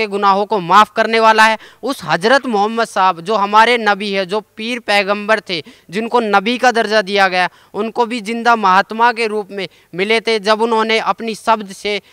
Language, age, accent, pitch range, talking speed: Hindi, 20-39, native, 180-215 Hz, 190 wpm